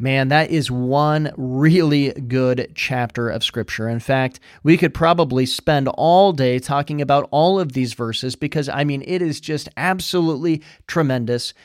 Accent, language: American, English